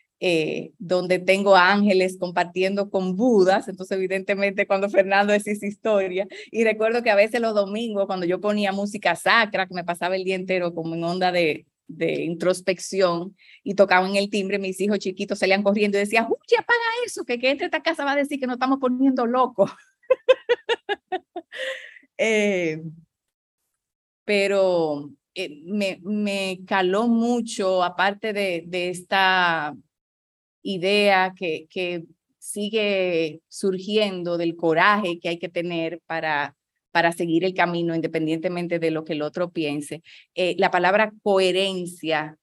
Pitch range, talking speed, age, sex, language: 165-200 Hz, 145 wpm, 30-49, female, Spanish